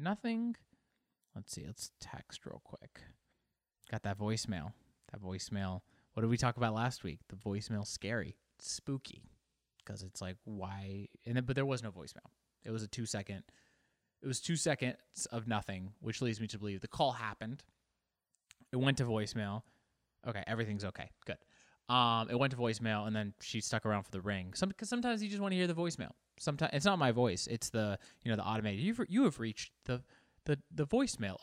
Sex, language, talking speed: male, English, 195 wpm